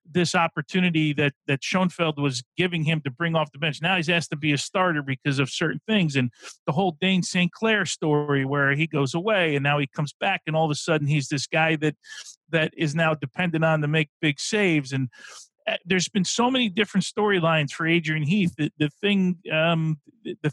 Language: English